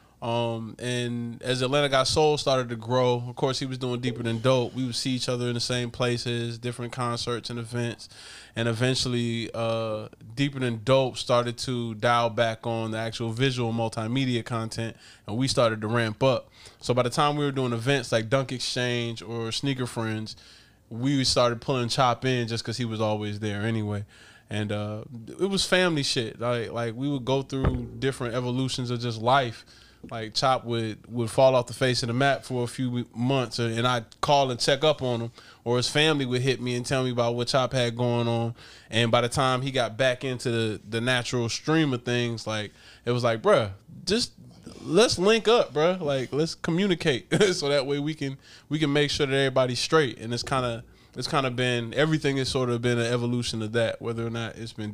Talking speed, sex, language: 215 wpm, male, English